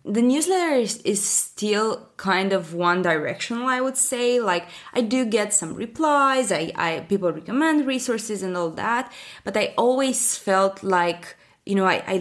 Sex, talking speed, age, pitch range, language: female, 170 wpm, 20-39, 180-230 Hz, English